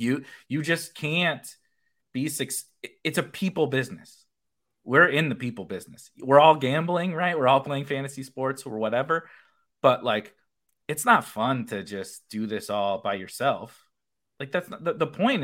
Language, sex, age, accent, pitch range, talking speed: English, male, 30-49, American, 115-160 Hz, 170 wpm